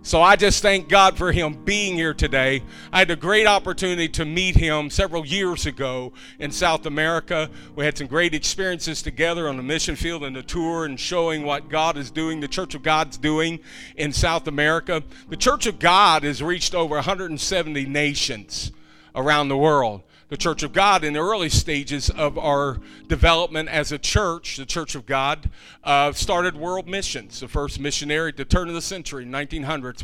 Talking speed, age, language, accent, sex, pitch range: 190 wpm, 50-69, English, American, male, 145-175 Hz